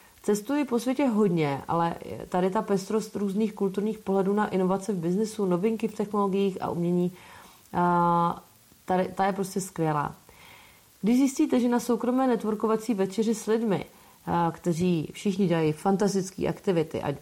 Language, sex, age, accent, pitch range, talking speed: English, female, 30-49, Czech, 170-210 Hz, 145 wpm